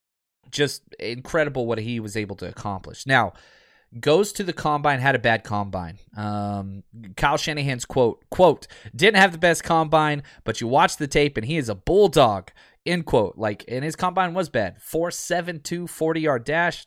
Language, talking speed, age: English, 185 wpm, 20-39